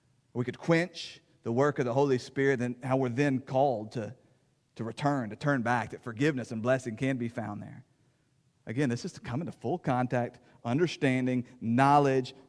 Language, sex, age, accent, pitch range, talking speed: English, male, 40-59, American, 120-145 Hz, 185 wpm